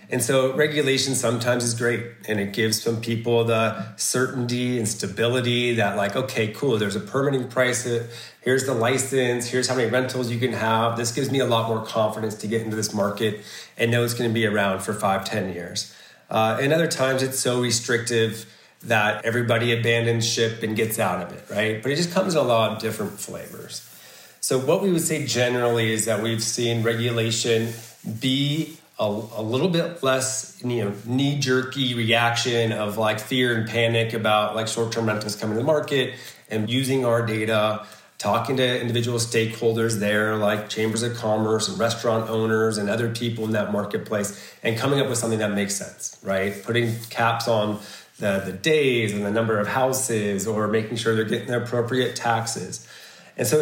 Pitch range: 110-125 Hz